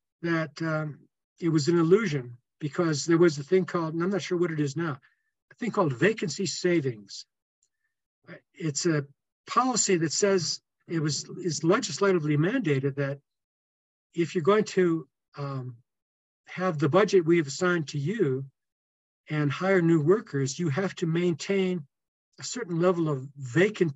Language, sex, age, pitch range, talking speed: English, male, 60-79, 145-185 Hz, 155 wpm